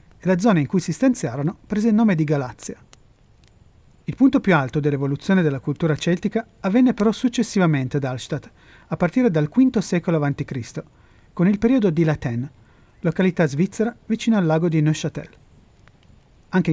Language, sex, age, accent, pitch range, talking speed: Italian, male, 30-49, native, 145-205 Hz, 160 wpm